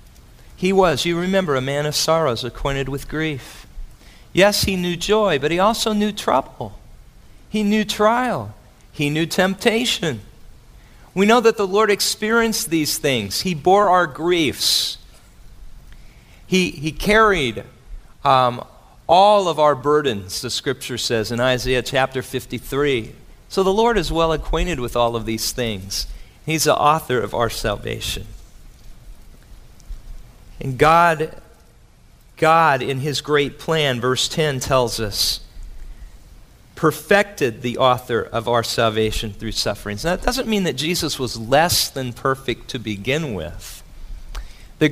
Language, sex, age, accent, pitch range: Korean, male, 40-59, American, 125-175 Hz